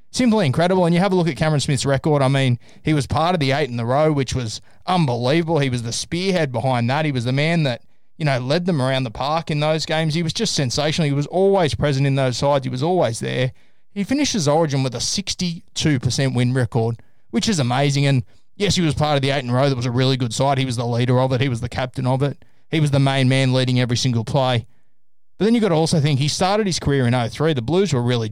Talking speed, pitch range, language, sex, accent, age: 270 wpm, 125-155 Hz, English, male, Australian, 20-39